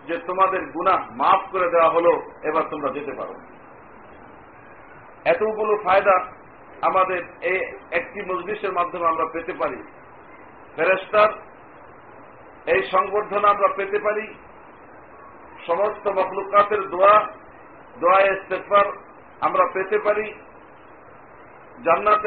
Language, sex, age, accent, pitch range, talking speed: Bengali, male, 50-69, native, 180-205 Hz, 65 wpm